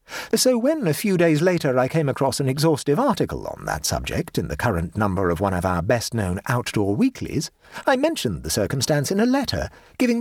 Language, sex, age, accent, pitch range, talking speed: English, male, 50-69, British, 115-190 Hz, 200 wpm